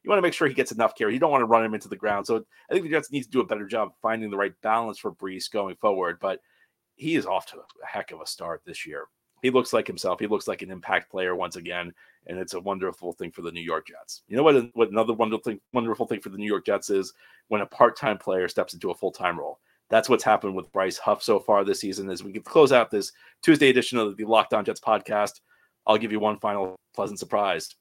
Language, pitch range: English, 100-130 Hz